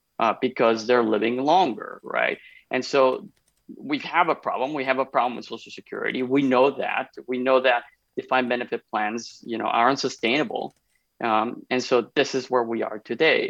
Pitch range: 115-140 Hz